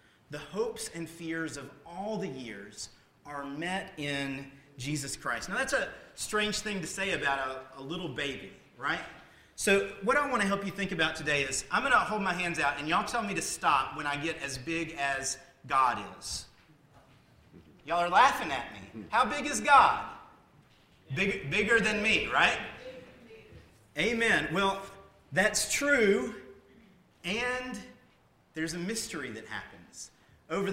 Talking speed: 160 wpm